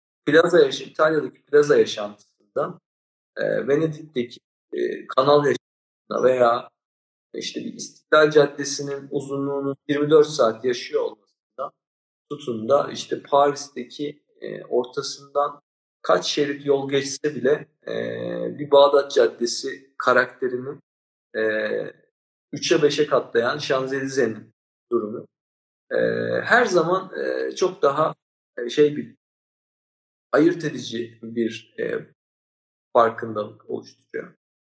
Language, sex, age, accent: Turkish, male, 50-69, native